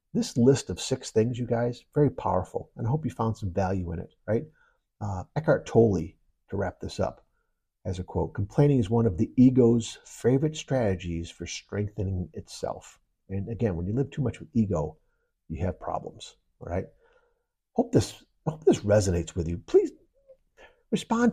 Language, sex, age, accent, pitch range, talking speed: English, male, 50-69, American, 100-130 Hz, 175 wpm